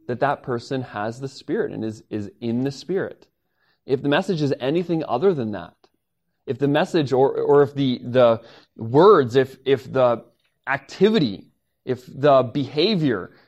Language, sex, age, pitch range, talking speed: English, male, 20-39, 130-175 Hz, 160 wpm